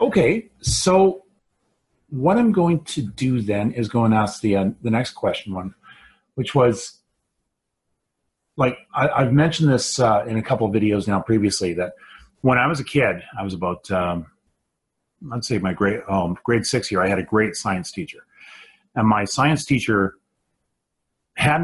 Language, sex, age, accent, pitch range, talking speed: English, male, 40-59, American, 100-130 Hz, 170 wpm